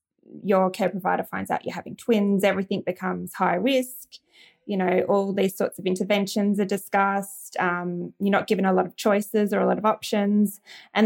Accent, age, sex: Australian, 20-39, female